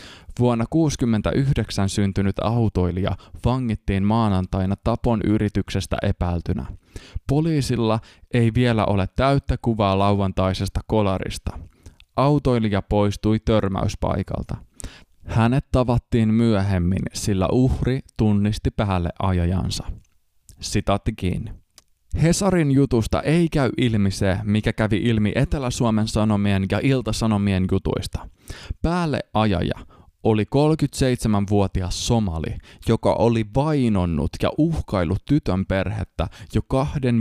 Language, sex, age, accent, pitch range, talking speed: Finnish, male, 20-39, native, 95-120 Hz, 90 wpm